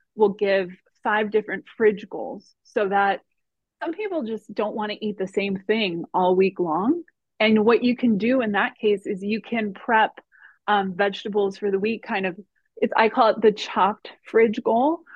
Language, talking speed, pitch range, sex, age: English, 190 wpm, 195-230 Hz, female, 20-39